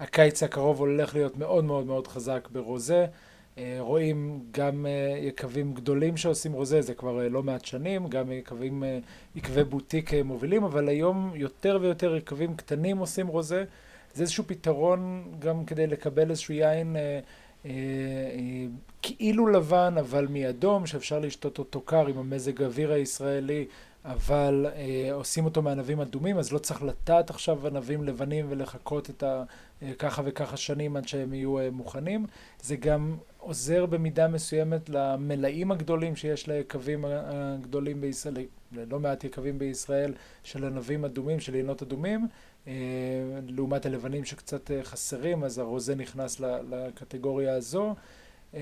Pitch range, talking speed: 135-160 Hz, 140 wpm